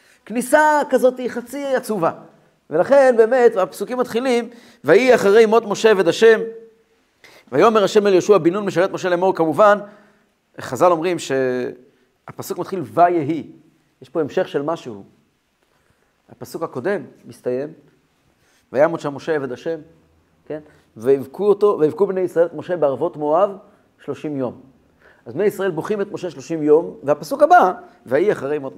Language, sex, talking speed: Hebrew, male, 135 wpm